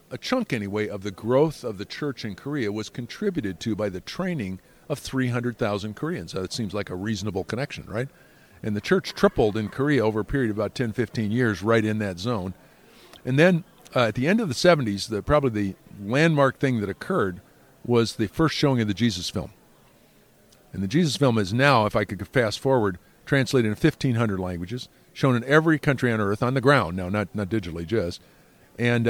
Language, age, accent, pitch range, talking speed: English, 50-69, American, 105-135 Hz, 205 wpm